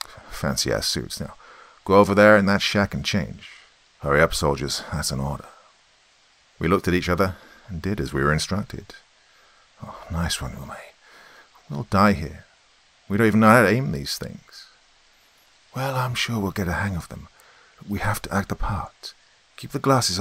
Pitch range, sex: 80-100 Hz, male